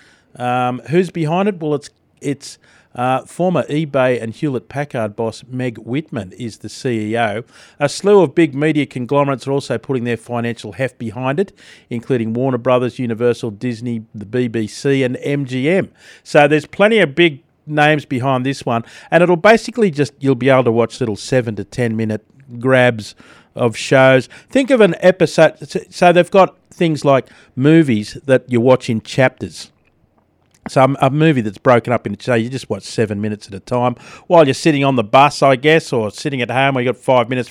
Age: 50-69